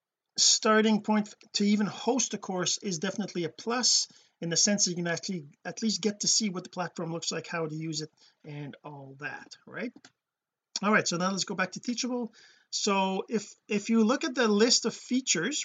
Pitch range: 170-220 Hz